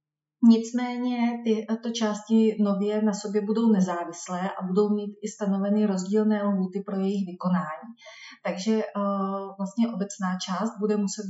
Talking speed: 130 wpm